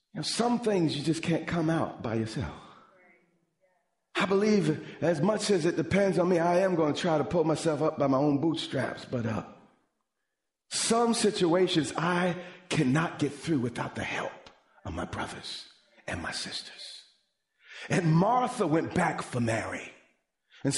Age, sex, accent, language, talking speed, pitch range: 40-59, male, American, English, 160 wpm, 175-280 Hz